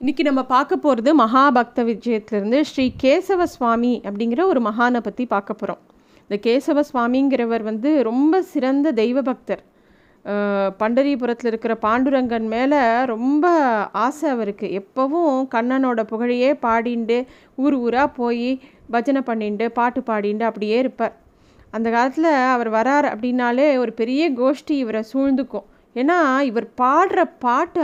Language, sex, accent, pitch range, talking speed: Tamil, female, native, 230-290 Hz, 120 wpm